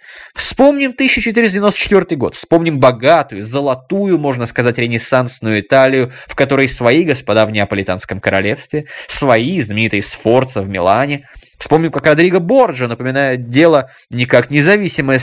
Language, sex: Russian, male